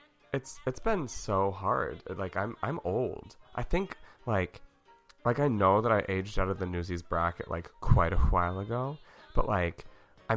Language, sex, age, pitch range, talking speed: English, male, 20-39, 85-105 Hz, 180 wpm